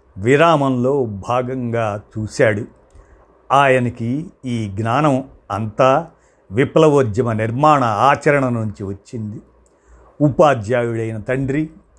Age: 50-69